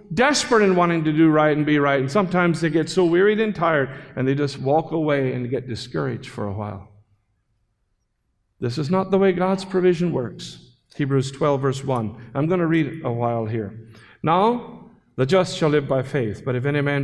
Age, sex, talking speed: 50-69, male, 205 wpm